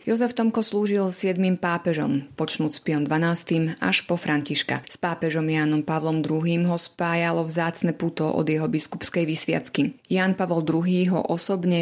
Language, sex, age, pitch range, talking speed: Slovak, female, 30-49, 155-180 Hz, 150 wpm